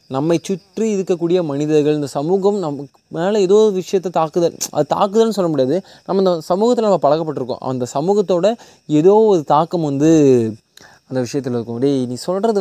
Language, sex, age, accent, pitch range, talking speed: Tamil, male, 20-39, native, 140-185 Hz, 150 wpm